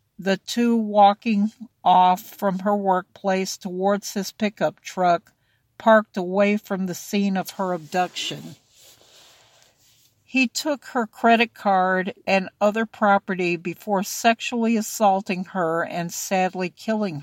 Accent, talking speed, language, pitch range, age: American, 120 wpm, English, 175-215 Hz, 60-79